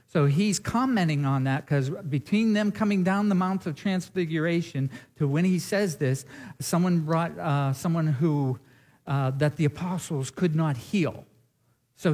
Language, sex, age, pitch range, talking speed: English, male, 50-69, 135-175 Hz, 160 wpm